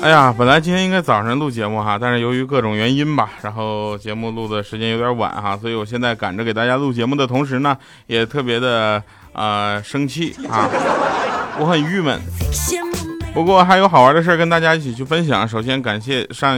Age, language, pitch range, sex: 20-39, Chinese, 110-150 Hz, male